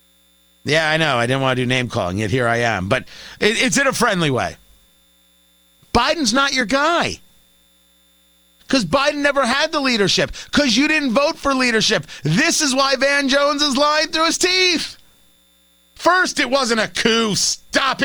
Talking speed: 170 wpm